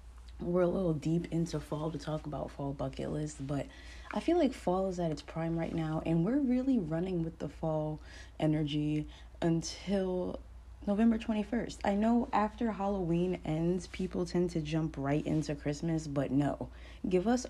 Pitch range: 155-230 Hz